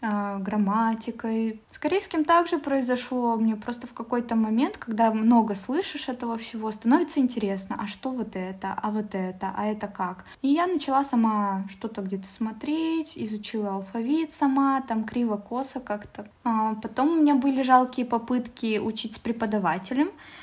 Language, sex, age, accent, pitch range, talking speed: Russian, female, 20-39, native, 205-250 Hz, 145 wpm